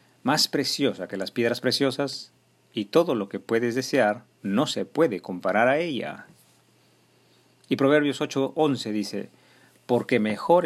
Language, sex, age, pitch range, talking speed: Spanish, male, 50-69, 100-140 Hz, 135 wpm